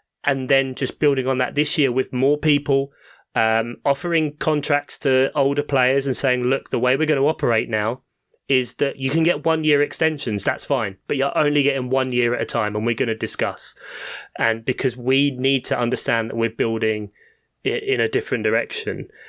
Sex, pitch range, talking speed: male, 115-135 Hz, 200 wpm